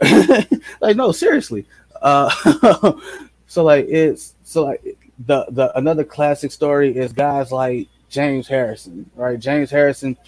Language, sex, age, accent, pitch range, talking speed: English, male, 20-39, American, 125-150 Hz, 130 wpm